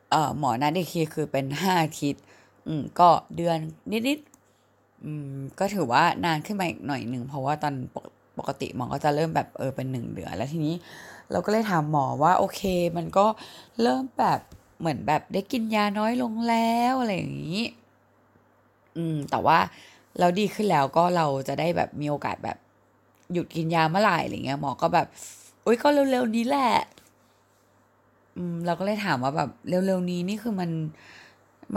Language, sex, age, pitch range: Thai, female, 20-39, 145-185 Hz